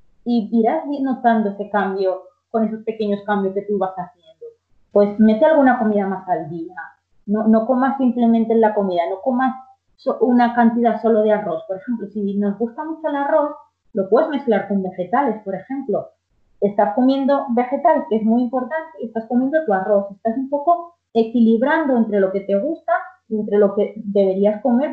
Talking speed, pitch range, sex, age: 180 wpm, 200-250 Hz, female, 20-39